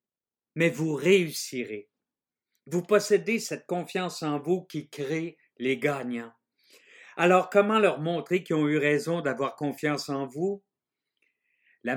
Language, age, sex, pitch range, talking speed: French, 50-69, male, 140-180 Hz, 130 wpm